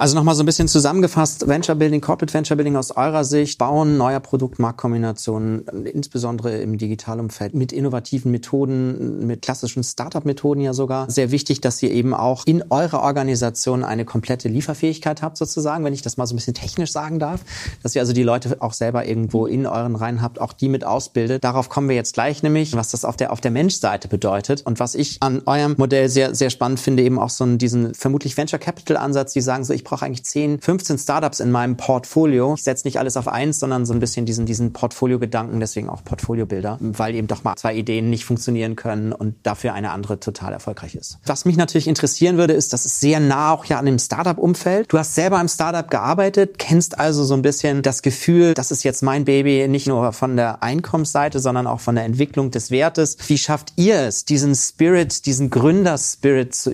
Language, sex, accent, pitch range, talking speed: German, male, German, 120-150 Hz, 210 wpm